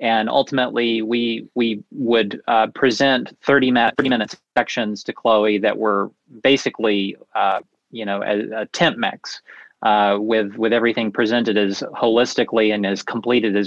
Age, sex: 30-49, male